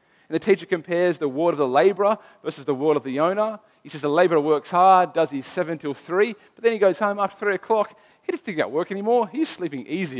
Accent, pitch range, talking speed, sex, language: Australian, 150-205 Hz, 255 wpm, male, English